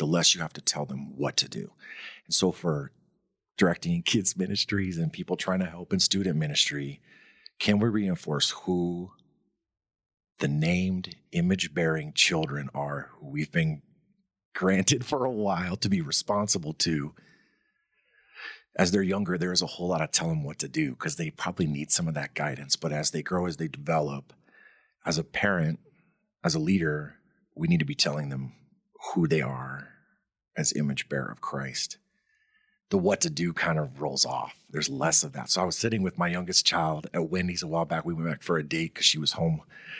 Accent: American